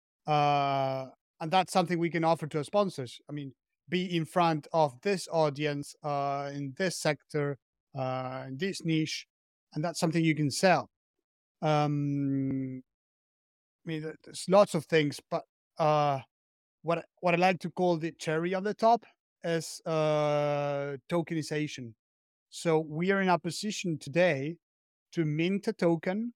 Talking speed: 150 wpm